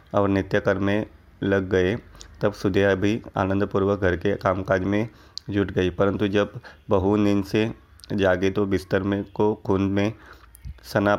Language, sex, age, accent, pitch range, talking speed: Hindi, male, 30-49, native, 90-100 Hz, 145 wpm